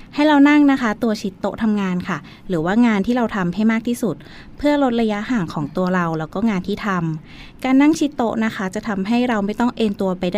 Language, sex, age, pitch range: Thai, female, 20-39, 180-235 Hz